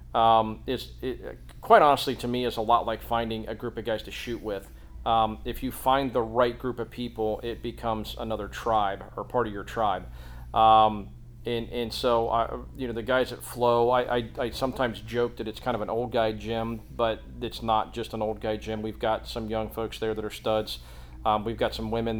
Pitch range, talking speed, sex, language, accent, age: 110-120 Hz, 225 wpm, male, English, American, 40-59